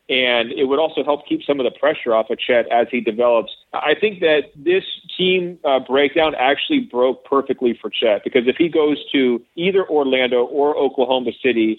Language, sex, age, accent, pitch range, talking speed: English, male, 40-59, American, 120-145 Hz, 195 wpm